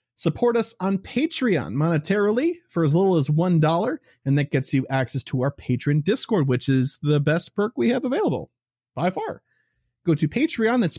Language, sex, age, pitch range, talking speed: English, male, 30-49, 130-180 Hz, 180 wpm